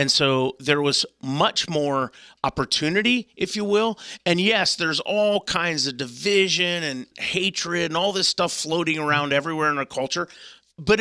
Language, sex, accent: English, male, American